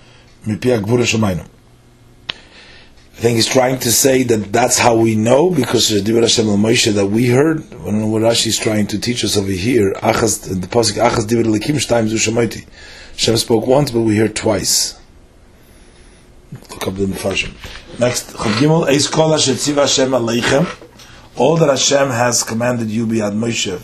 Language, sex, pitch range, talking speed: English, male, 105-125 Hz, 150 wpm